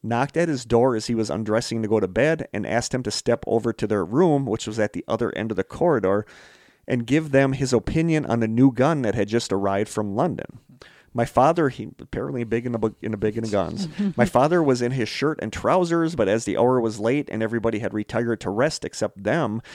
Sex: male